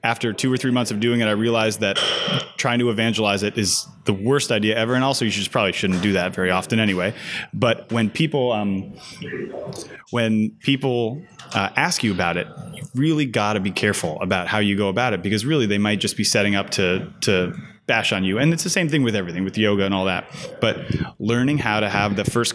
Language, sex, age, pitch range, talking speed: English, male, 20-39, 105-130 Hz, 230 wpm